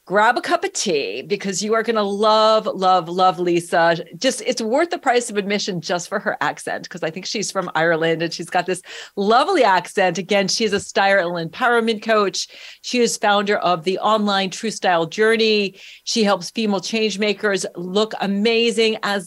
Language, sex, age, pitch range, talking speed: English, female, 40-59, 185-225 Hz, 195 wpm